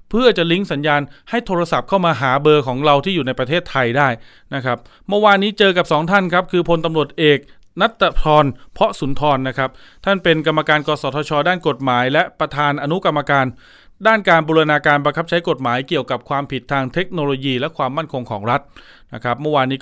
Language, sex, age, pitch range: Thai, male, 20-39, 130-165 Hz